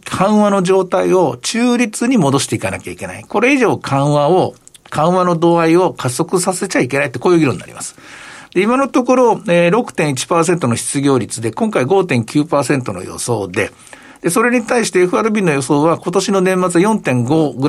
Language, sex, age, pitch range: Japanese, male, 60-79, 130-190 Hz